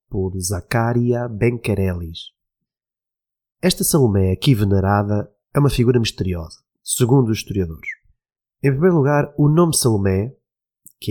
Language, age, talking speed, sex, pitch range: Portuguese, 30-49, 115 wpm, male, 100-125 Hz